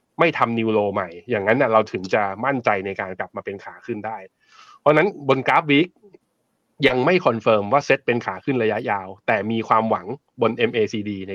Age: 20-39